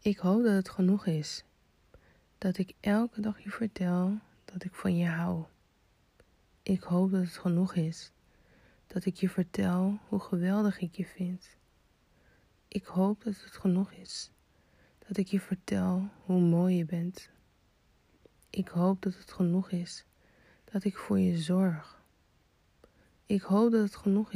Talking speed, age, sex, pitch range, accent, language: 155 wpm, 20-39, female, 175-200 Hz, Dutch, Dutch